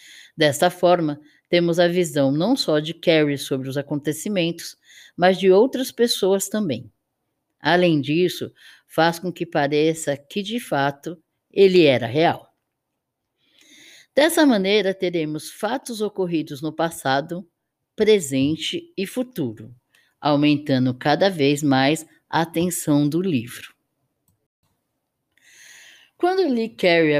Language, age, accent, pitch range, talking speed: Portuguese, 10-29, Brazilian, 145-205 Hz, 115 wpm